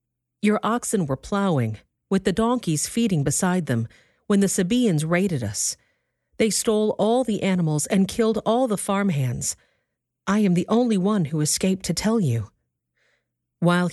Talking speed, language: 155 wpm, English